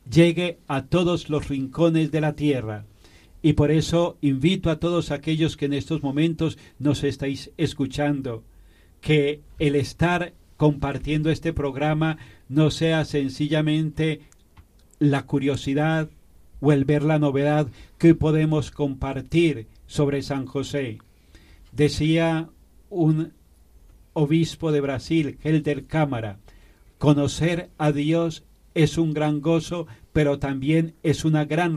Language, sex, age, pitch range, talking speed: Spanish, male, 40-59, 135-155 Hz, 120 wpm